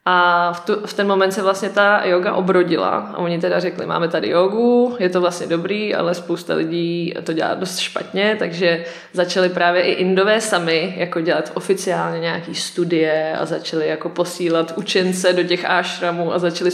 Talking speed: 180 wpm